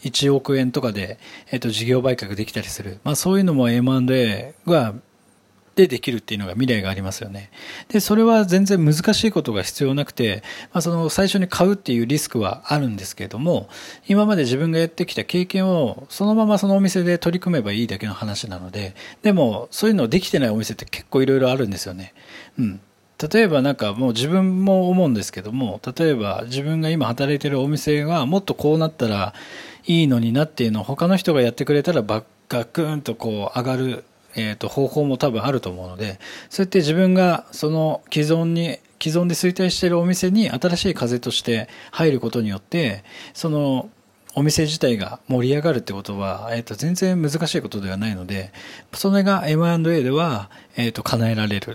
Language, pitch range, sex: Japanese, 110-175 Hz, male